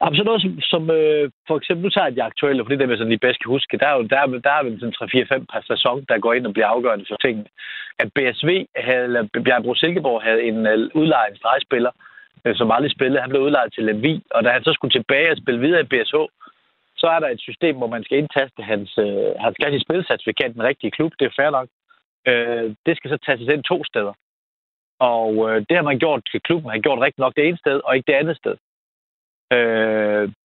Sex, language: male, Danish